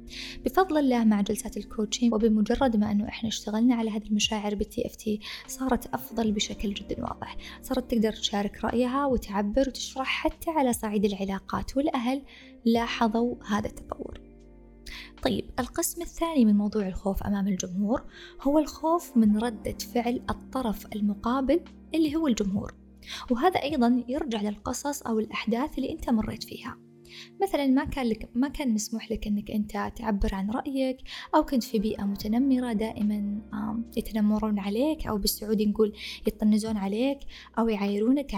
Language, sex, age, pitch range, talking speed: Arabic, female, 20-39, 215-255 Hz, 140 wpm